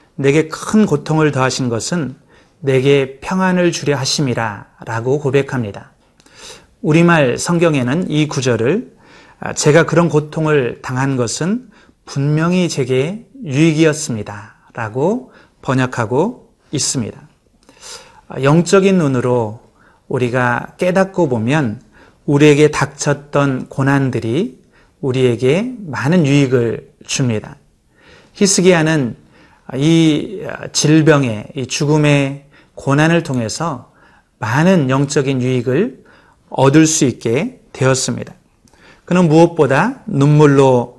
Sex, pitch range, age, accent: male, 130-170 Hz, 30-49, native